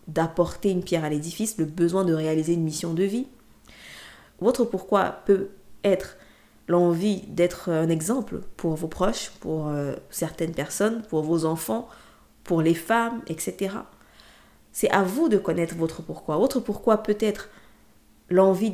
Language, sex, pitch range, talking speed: French, female, 170-200 Hz, 145 wpm